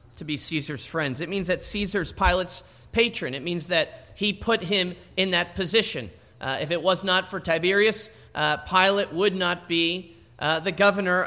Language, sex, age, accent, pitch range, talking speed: English, male, 40-59, American, 155-210 Hz, 180 wpm